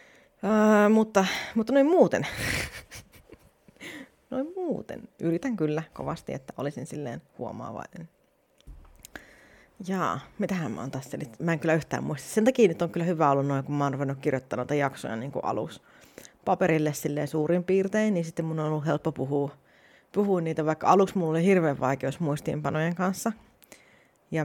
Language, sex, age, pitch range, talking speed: Finnish, female, 30-49, 140-185 Hz, 150 wpm